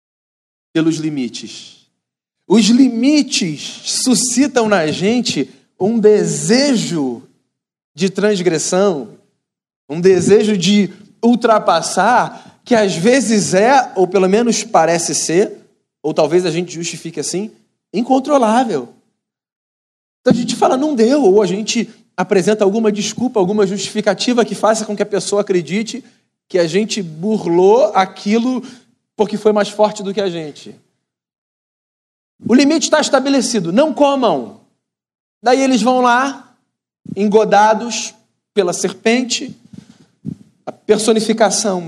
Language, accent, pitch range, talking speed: Portuguese, Brazilian, 195-230 Hz, 115 wpm